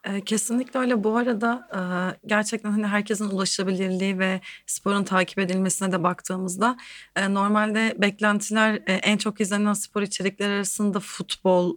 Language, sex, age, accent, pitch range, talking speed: Turkish, female, 30-49, native, 180-215 Hz, 115 wpm